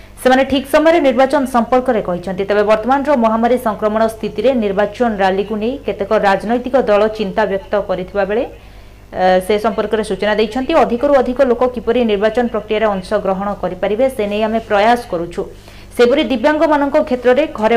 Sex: female